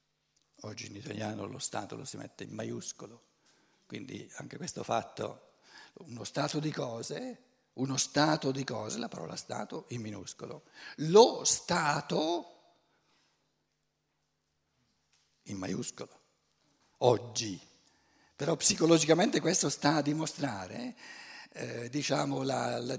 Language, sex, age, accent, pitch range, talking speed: Italian, male, 60-79, native, 120-160 Hz, 110 wpm